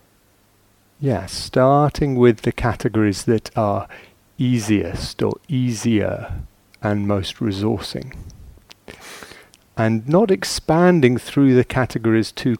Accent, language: British, English